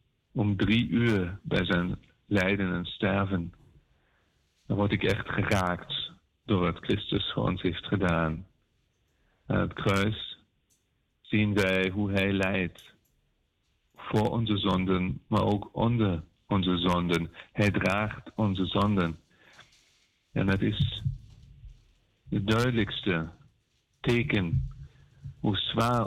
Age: 50-69